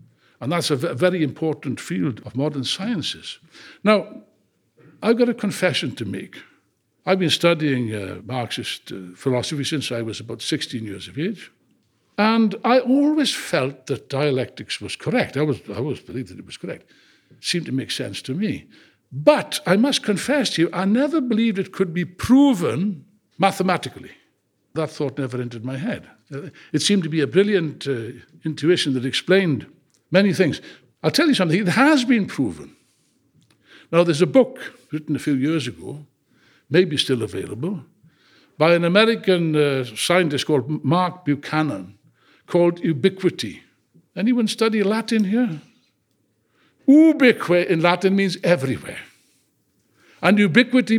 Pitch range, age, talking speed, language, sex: 135-210 Hz, 60-79, 150 wpm, English, male